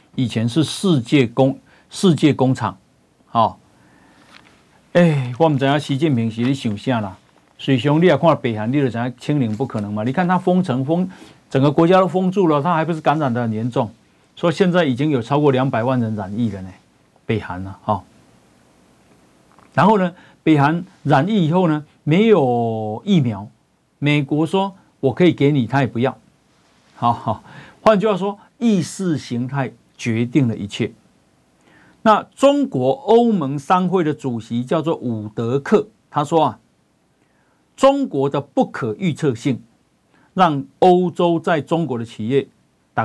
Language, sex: Chinese, male